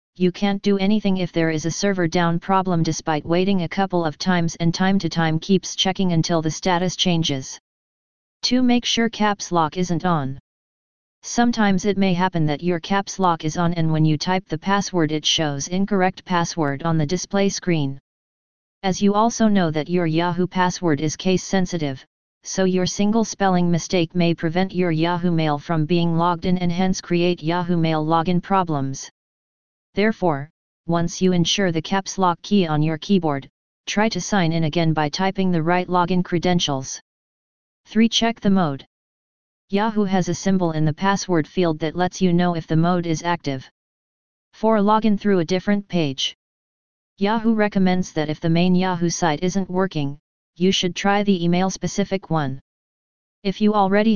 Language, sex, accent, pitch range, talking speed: English, female, American, 165-195 Hz, 175 wpm